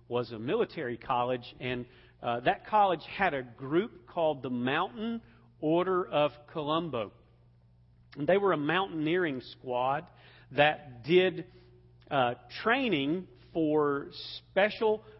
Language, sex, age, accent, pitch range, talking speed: English, male, 40-59, American, 140-190 Hz, 110 wpm